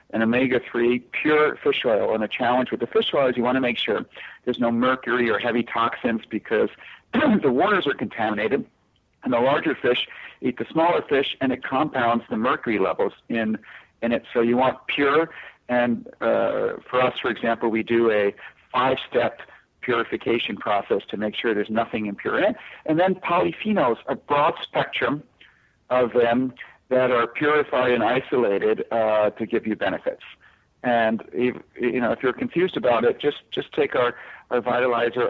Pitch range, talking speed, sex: 115-140 Hz, 175 wpm, male